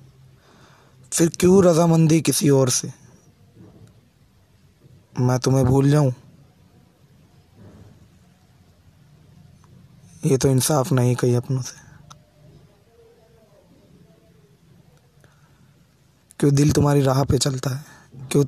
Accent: native